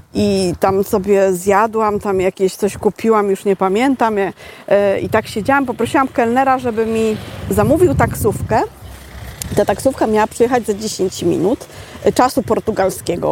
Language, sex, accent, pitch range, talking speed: Polish, female, native, 205-270 Hz, 130 wpm